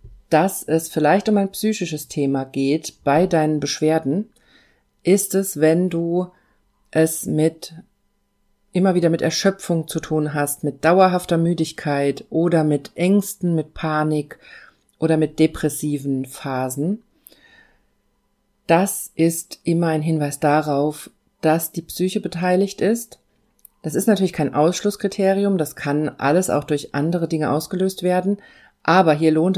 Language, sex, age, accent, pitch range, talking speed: German, female, 40-59, German, 150-185 Hz, 130 wpm